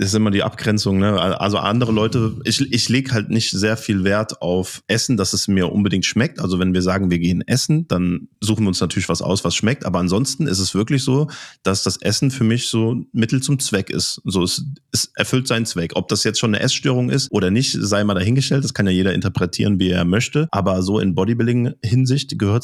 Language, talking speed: German, 235 wpm